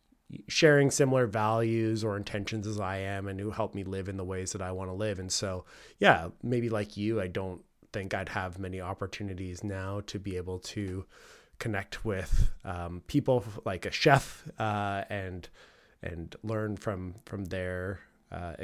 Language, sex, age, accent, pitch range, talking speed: English, male, 20-39, American, 95-115 Hz, 175 wpm